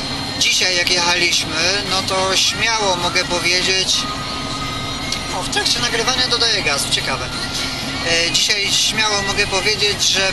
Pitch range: 125-185 Hz